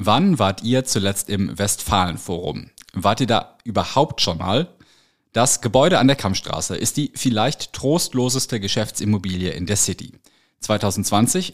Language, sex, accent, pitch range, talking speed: German, male, German, 100-130 Hz, 135 wpm